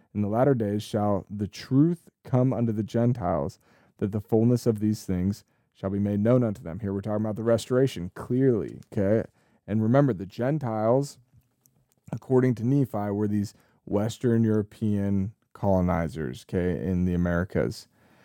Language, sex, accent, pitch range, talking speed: English, male, American, 105-120 Hz, 155 wpm